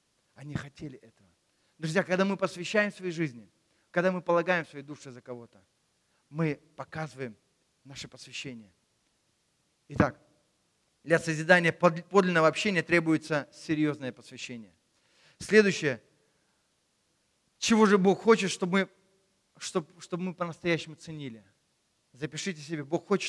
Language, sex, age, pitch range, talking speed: Russian, male, 40-59, 150-220 Hz, 115 wpm